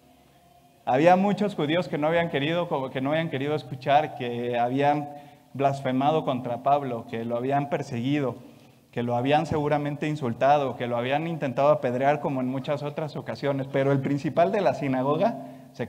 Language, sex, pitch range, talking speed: Spanish, male, 120-145 Hz, 160 wpm